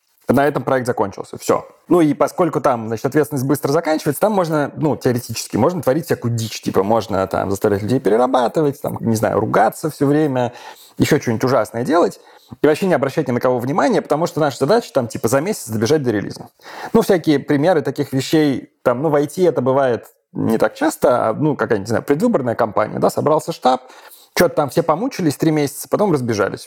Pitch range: 130-170 Hz